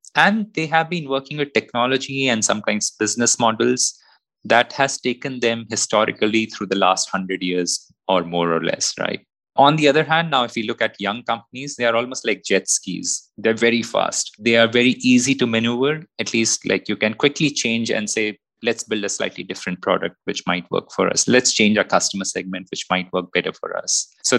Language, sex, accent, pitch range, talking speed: English, male, Indian, 95-130 Hz, 210 wpm